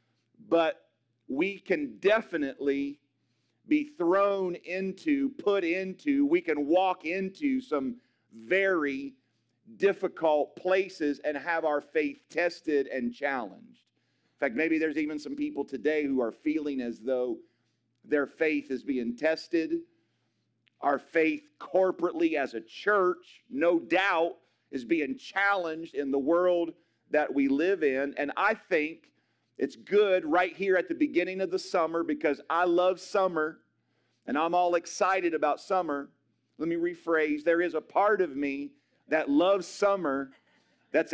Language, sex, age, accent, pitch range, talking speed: English, male, 40-59, American, 145-190 Hz, 140 wpm